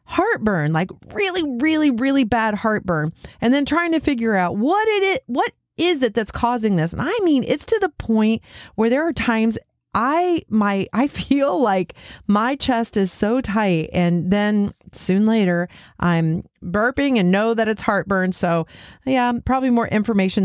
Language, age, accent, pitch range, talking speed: English, 40-59, American, 185-275 Hz, 170 wpm